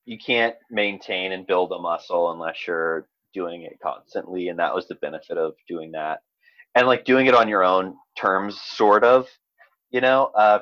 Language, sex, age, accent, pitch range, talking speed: English, male, 30-49, American, 90-125 Hz, 185 wpm